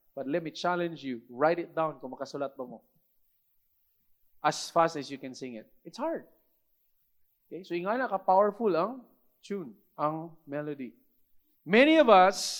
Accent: Filipino